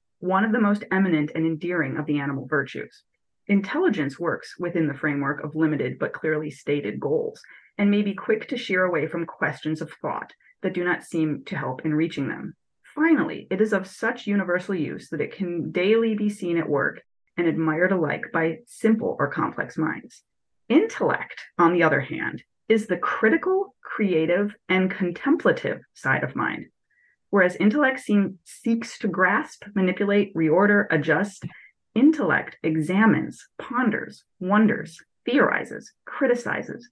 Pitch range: 160-210 Hz